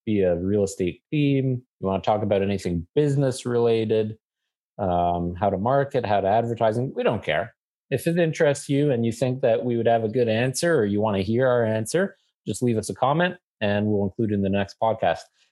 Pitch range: 100-125 Hz